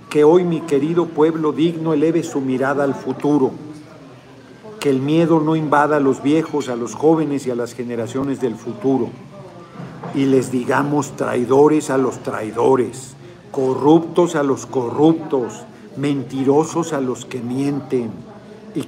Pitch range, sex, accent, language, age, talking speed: 125-155 Hz, male, Mexican, Spanish, 50-69, 145 wpm